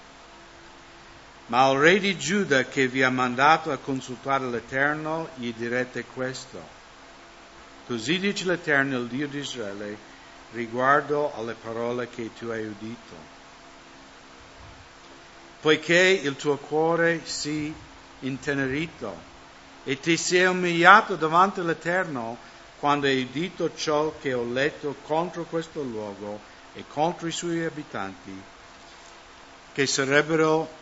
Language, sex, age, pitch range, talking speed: English, male, 60-79, 95-150 Hz, 110 wpm